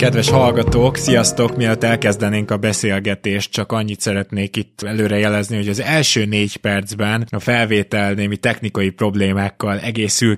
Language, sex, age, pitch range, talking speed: Hungarian, male, 20-39, 100-115 Hz, 140 wpm